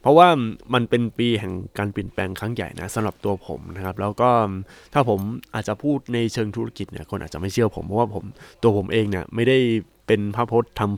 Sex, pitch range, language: male, 100-120 Hz, Thai